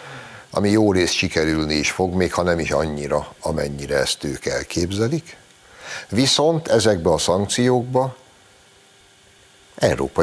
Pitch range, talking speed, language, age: 80-100 Hz, 115 wpm, Hungarian, 60-79